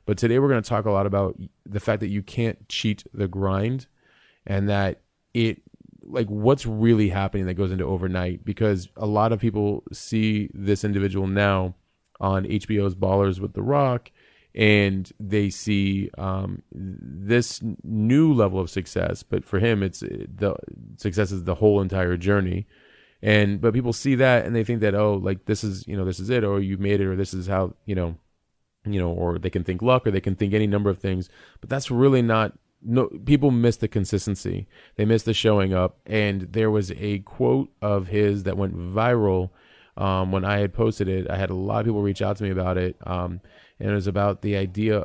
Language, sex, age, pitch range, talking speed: English, male, 30-49, 95-110 Hz, 205 wpm